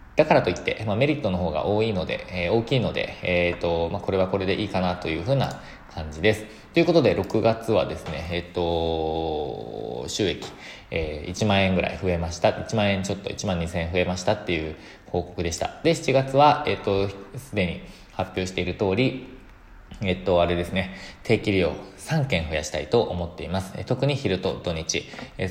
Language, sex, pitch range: Japanese, male, 85-110 Hz